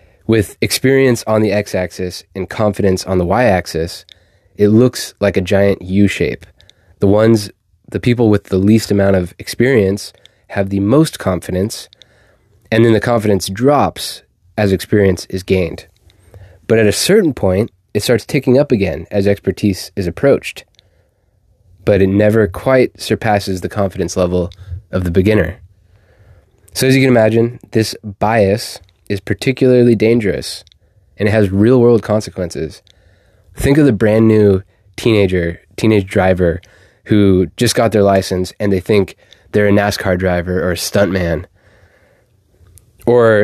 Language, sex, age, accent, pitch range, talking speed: English, male, 20-39, American, 95-110 Hz, 140 wpm